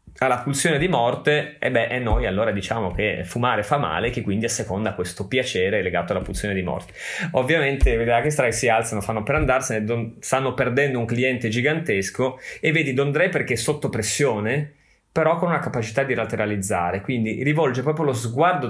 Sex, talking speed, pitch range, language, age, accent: male, 195 wpm, 110-135 Hz, Italian, 30-49, native